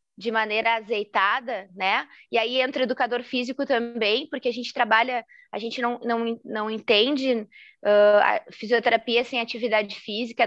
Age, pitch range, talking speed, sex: 20-39, 220-260 Hz, 155 wpm, female